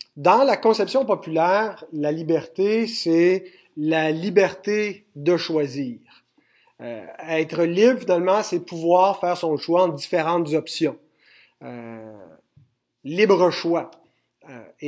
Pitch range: 155-220 Hz